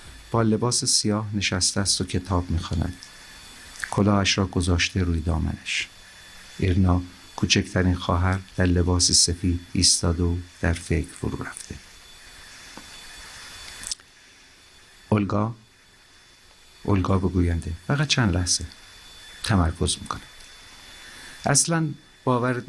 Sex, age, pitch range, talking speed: male, 50-69, 90-100 Hz, 95 wpm